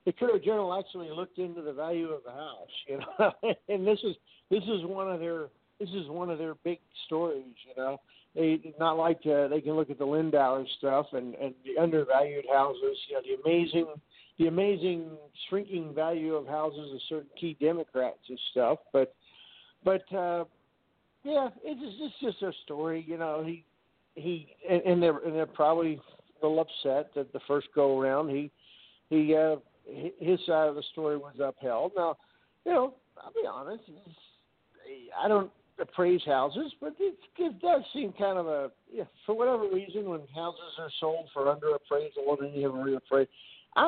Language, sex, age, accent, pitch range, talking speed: English, male, 50-69, American, 150-195 Hz, 180 wpm